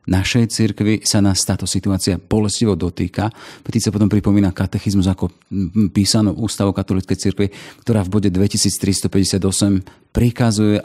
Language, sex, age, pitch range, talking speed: Slovak, male, 40-59, 90-105 Hz, 125 wpm